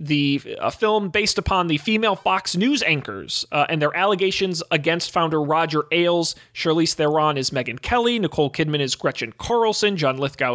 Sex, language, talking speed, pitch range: male, English, 170 wpm, 125-175 Hz